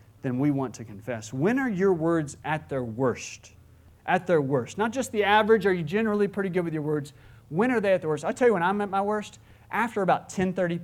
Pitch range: 130-195 Hz